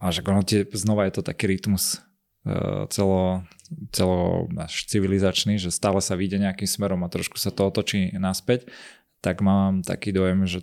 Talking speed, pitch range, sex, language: 145 wpm, 90-100 Hz, male, Slovak